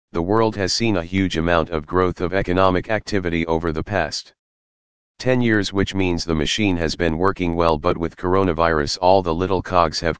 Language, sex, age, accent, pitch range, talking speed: English, male, 40-59, American, 85-100 Hz, 195 wpm